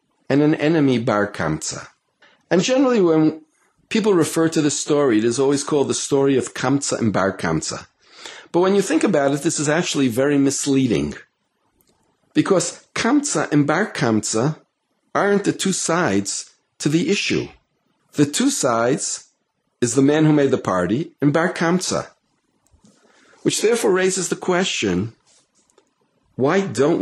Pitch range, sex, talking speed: 120-160 Hz, male, 140 wpm